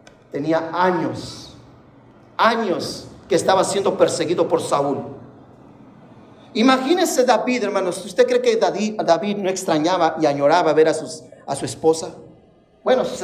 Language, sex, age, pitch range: Spanish, male, 50-69, 170-235 Hz